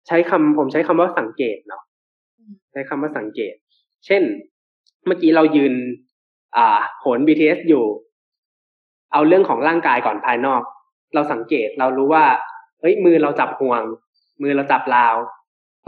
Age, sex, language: 20-39, male, Thai